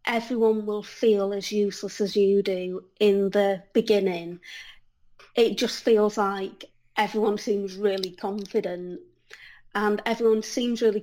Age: 20-39